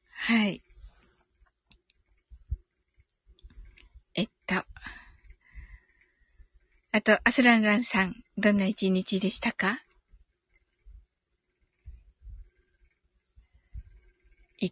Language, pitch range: Japanese, 180-270 Hz